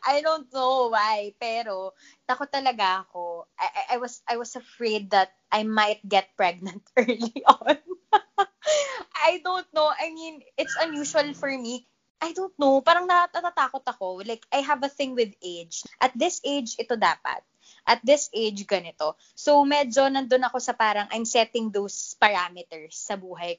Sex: female